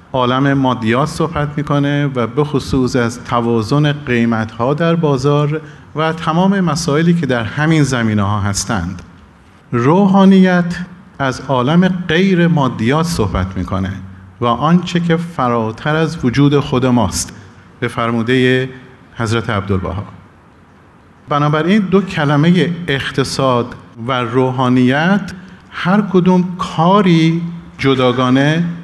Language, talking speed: Persian, 100 wpm